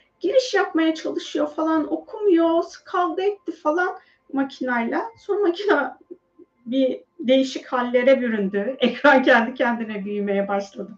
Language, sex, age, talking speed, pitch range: Turkish, female, 40-59, 110 wpm, 230-360 Hz